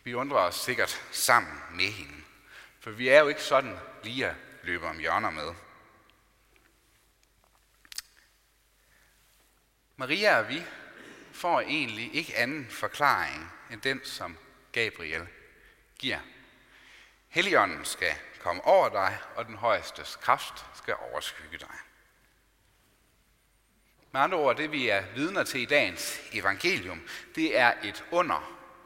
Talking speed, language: 125 wpm, Danish